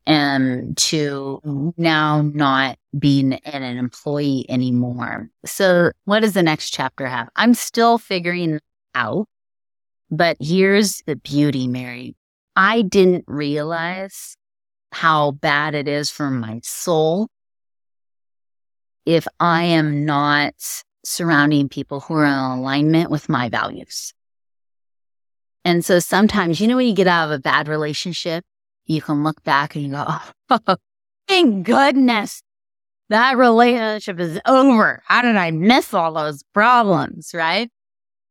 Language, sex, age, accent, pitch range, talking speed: English, female, 30-49, American, 140-195 Hz, 130 wpm